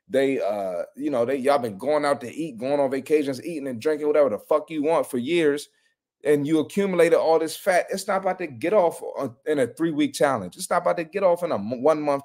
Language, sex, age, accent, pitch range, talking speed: English, male, 30-49, American, 140-180 Hz, 250 wpm